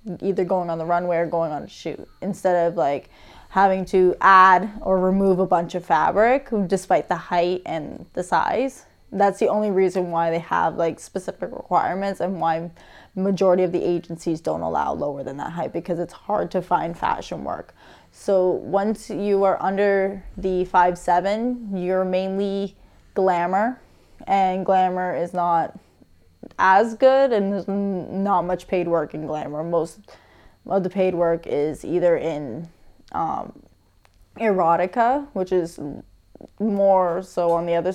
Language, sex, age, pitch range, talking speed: English, female, 10-29, 170-195 Hz, 155 wpm